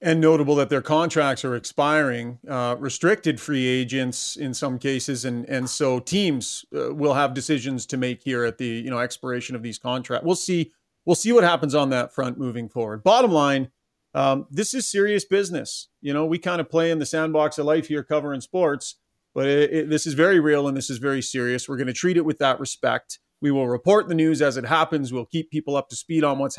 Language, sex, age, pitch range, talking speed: English, male, 40-59, 130-170 Hz, 230 wpm